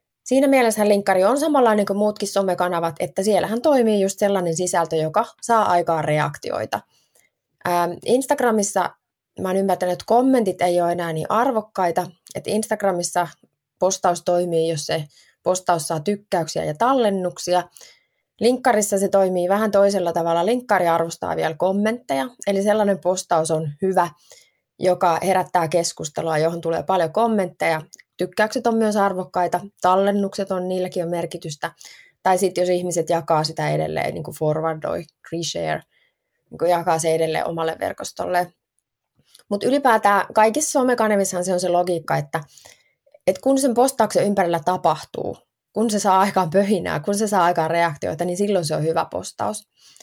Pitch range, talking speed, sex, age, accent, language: 170-210 Hz, 140 wpm, female, 20-39, native, Finnish